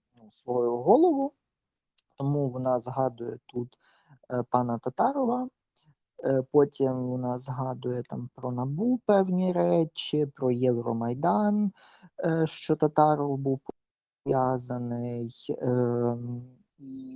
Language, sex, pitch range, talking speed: Ukrainian, male, 125-165 Hz, 75 wpm